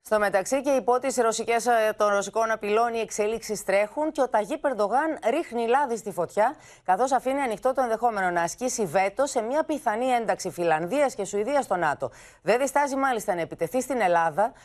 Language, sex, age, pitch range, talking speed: Greek, female, 30-49, 190-250 Hz, 180 wpm